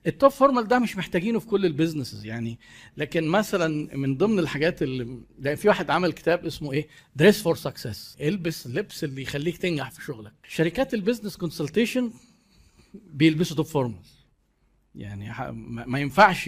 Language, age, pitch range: Arabic, 50-69, 140-180 Hz